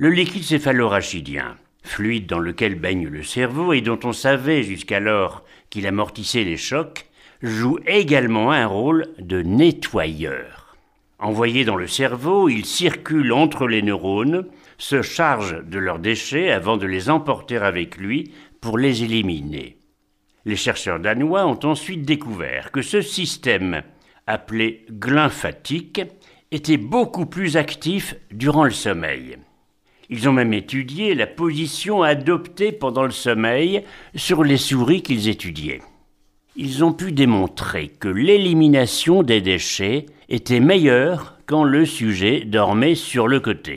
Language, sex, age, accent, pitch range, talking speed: French, male, 60-79, French, 105-160 Hz, 135 wpm